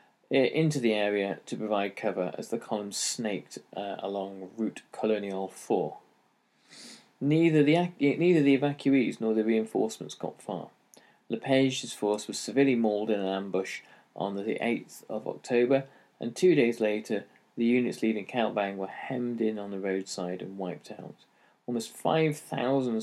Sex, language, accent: male, English, British